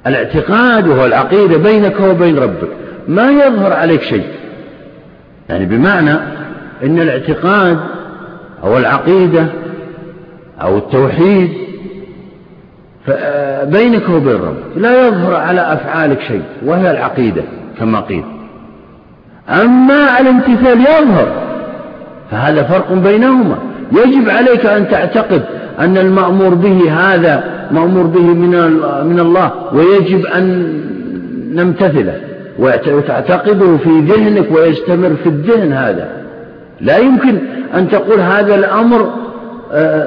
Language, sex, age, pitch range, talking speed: Arabic, male, 50-69, 170-220 Hz, 95 wpm